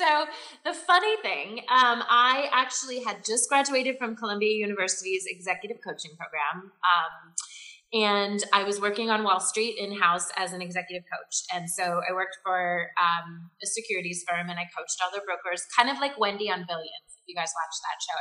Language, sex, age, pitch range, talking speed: English, female, 20-39, 180-235 Hz, 185 wpm